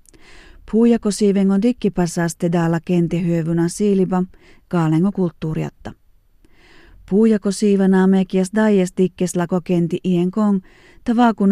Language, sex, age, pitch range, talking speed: Finnish, female, 40-59, 175-195 Hz, 85 wpm